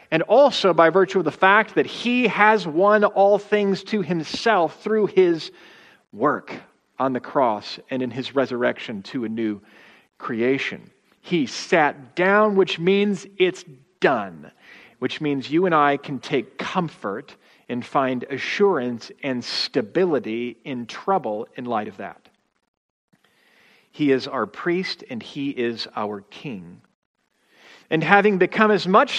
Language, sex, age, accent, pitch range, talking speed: English, male, 40-59, American, 135-200 Hz, 140 wpm